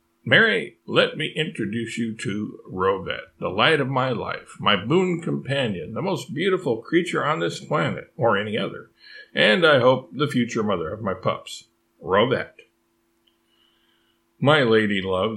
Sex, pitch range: male, 100-125 Hz